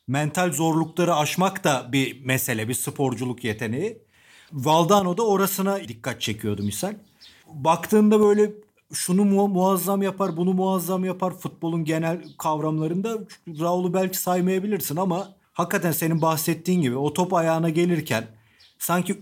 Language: Turkish